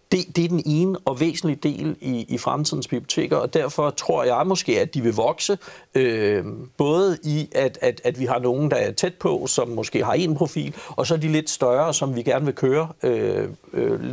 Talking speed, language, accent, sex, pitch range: 220 wpm, Danish, native, male, 125-160 Hz